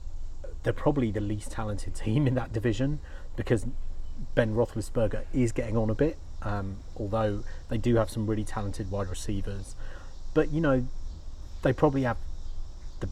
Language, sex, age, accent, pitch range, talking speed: English, male, 30-49, British, 80-115 Hz, 155 wpm